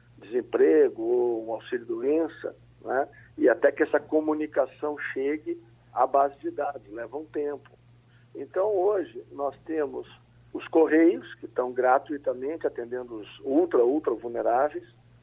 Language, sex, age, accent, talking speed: Portuguese, male, 50-69, Brazilian, 120 wpm